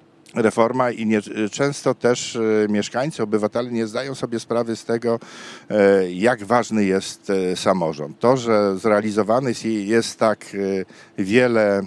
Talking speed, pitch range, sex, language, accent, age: 115 wpm, 100-120 Hz, male, Polish, native, 50-69